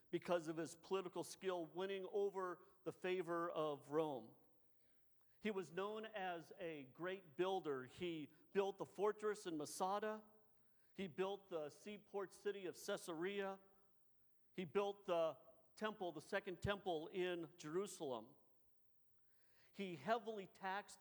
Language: English